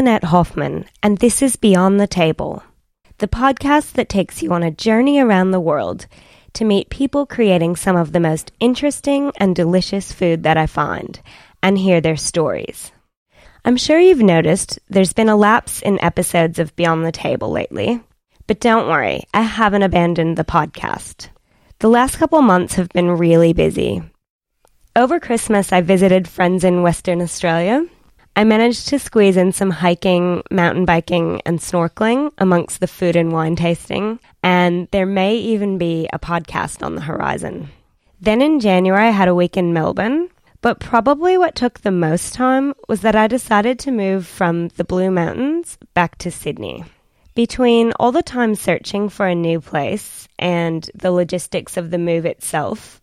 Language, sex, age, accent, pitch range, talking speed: English, female, 20-39, American, 175-230 Hz, 170 wpm